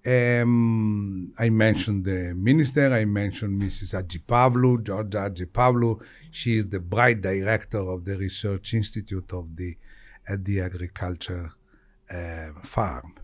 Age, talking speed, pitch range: 60-79, 130 wpm, 95-130 Hz